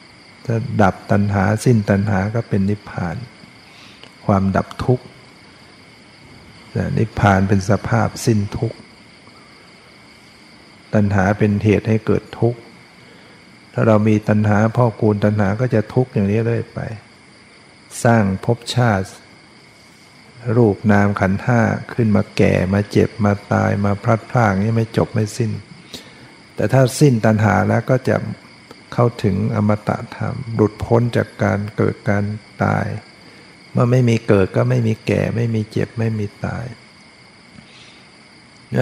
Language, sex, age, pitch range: Thai, male, 60-79, 105-115 Hz